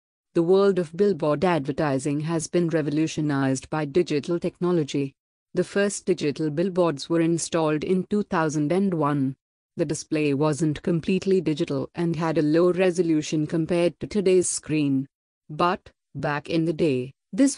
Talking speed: 135 wpm